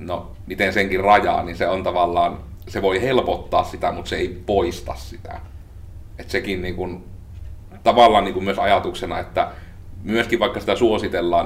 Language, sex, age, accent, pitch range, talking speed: Finnish, male, 30-49, native, 90-100 Hz, 150 wpm